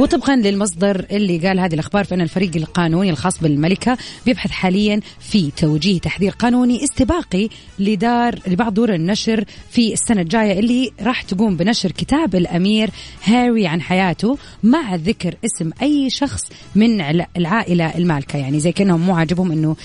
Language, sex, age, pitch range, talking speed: Arabic, female, 30-49, 170-225 Hz, 145 wpm